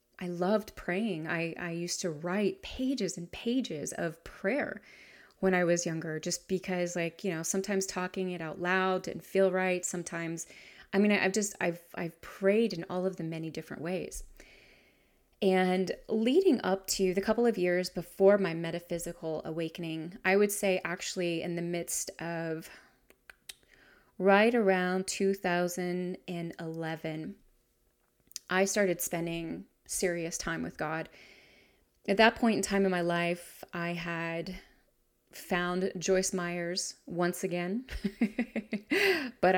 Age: 30-49